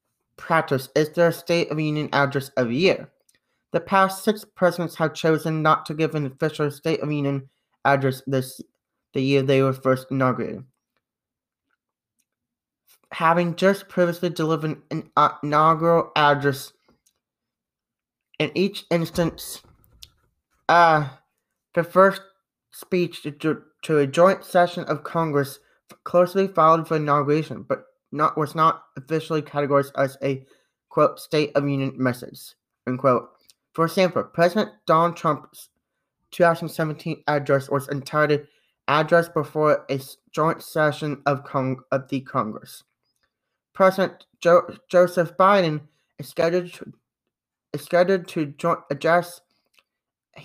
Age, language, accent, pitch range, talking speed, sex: 30-49, English, American, 140-170 Hz, 120 wpm, male